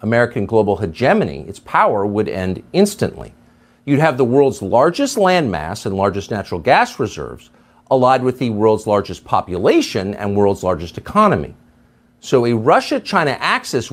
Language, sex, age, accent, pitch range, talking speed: English, male, 50-69, American, 100-150 Hz, 140 wpm